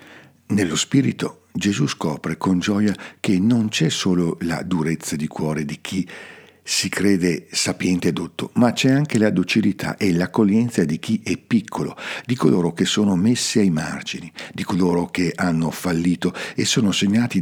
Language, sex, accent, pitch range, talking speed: Italian, male, native, 85-110 Hz, 160 wpm